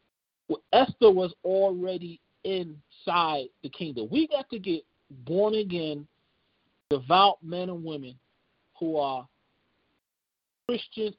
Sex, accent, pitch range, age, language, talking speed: male, American, 150-200 Hz, 40-59, English, 95 wpm